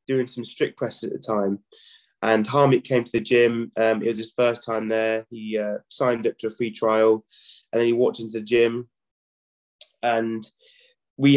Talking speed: 195 wpm